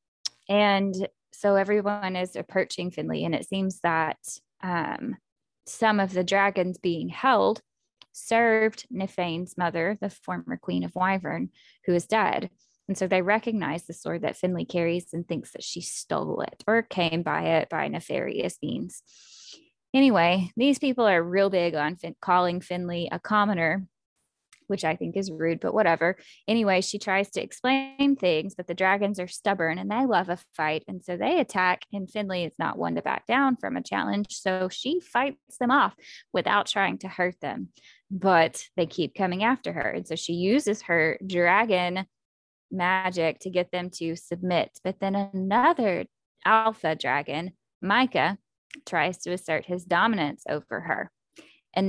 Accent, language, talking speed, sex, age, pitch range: American, English, 165 wpm, female, 10-29, 175-210 Hz